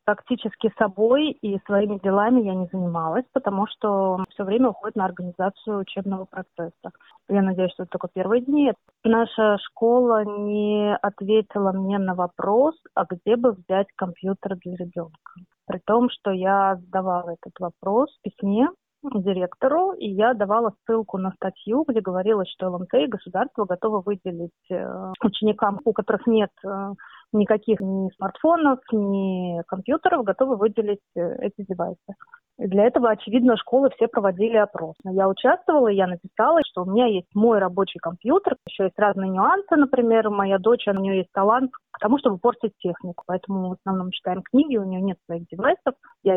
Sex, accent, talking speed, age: female, native, 155 wpm, 30-49